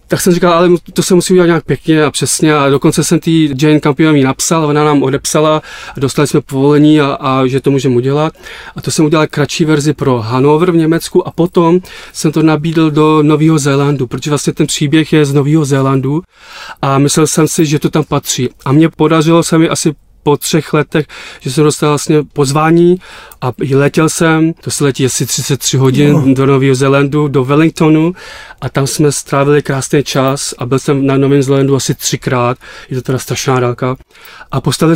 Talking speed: 200 wpm